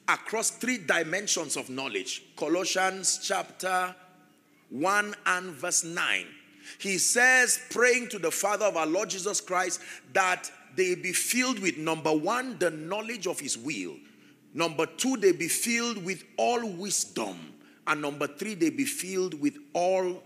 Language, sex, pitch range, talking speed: English, male, 145-220 Hz, 150 wpm